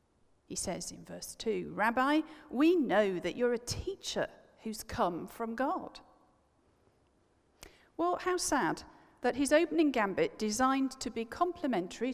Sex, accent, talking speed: female, British, 135 wpm